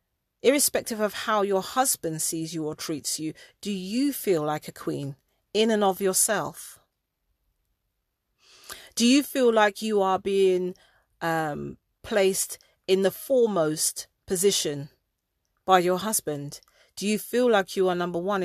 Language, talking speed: English, 145 wpm